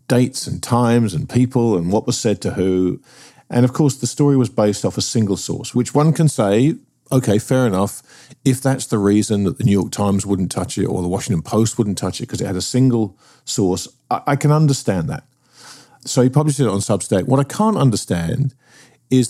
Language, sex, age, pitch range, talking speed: English, male, 50-69, 100-135 Hz, 220 wpm